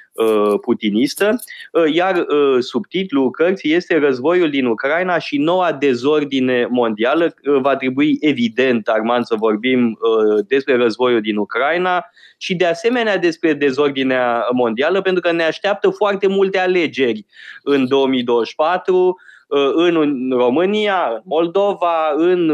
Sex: male